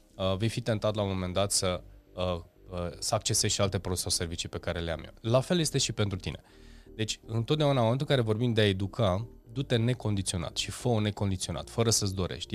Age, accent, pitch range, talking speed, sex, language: 20-39, native, 90-120 Hz, 225 wpm, male, Romanian